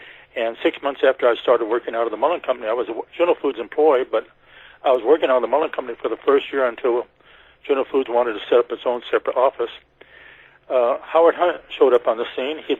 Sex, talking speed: male, 235 wpm